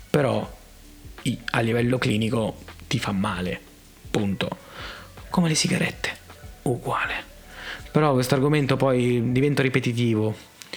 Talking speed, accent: 100 wpm, native